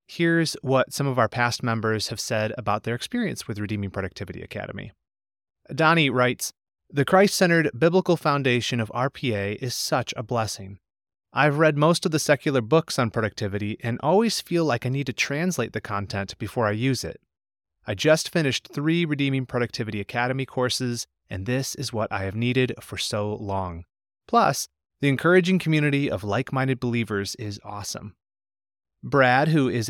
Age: 30-49